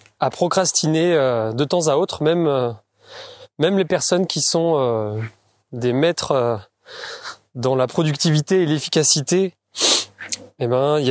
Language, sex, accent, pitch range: French, male, French, 130-175 Hz